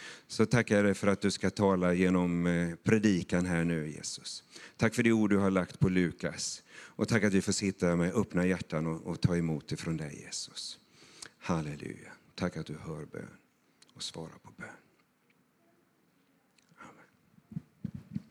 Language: Swedish